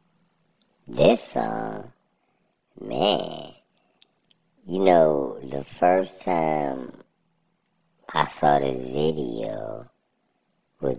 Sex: male